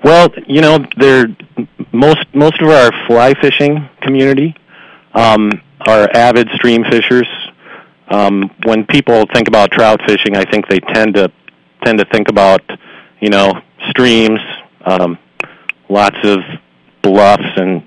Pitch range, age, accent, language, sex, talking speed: 95-115 Hz, 40-59, American, English, male, 130 wpm